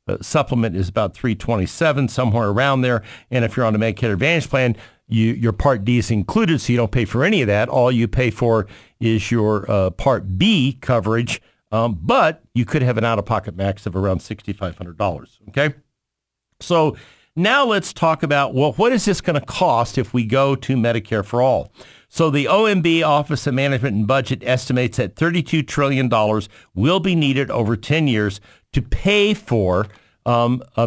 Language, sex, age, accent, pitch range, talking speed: English, male, 50-69, American, 110-145 Hz, 180 wpm